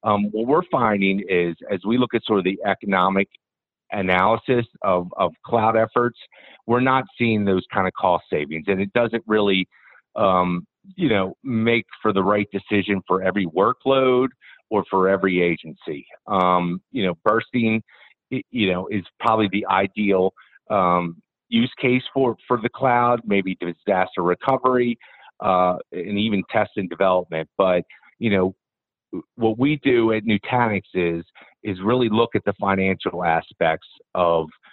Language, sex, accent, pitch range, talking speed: English, male, American, 90-110 Hz, 150 wpm